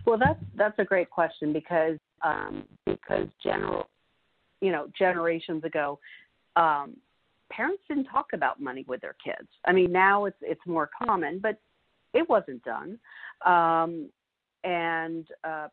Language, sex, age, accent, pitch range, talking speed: English, female, 50-69, American, 155-195 Hz, 140 wpm